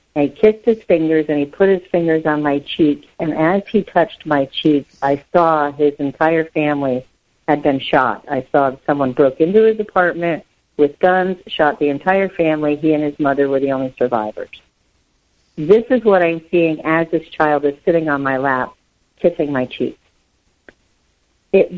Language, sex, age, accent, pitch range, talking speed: English, female, 50-69, American, 135-170 Hz, 180 wpm